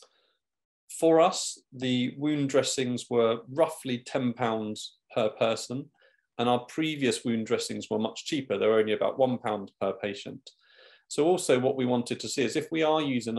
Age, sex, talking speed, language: 40-59, male, 165 wpm, English